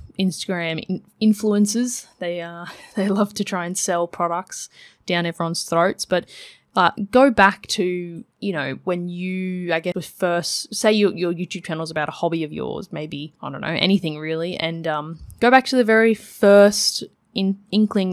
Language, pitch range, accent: English, 165-200 Hz, Australian